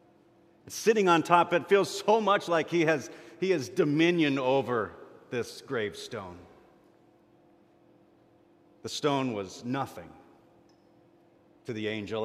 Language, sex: English, male